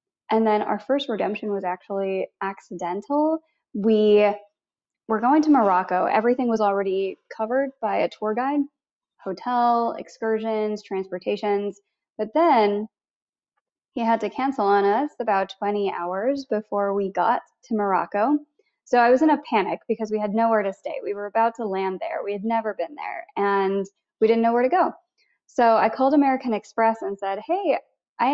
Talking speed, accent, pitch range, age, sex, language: 165 wpm, American, 200-250 Hz, 20-39, female, English